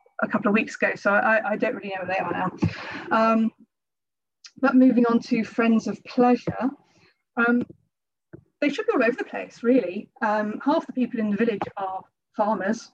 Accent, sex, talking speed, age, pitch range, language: British, female, 190 wpm, 30-49, 210-280 Hz, English